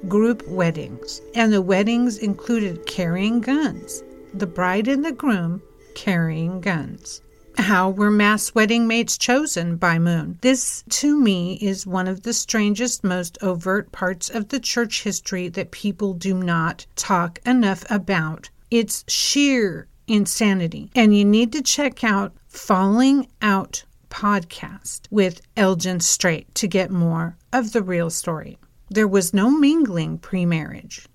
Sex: female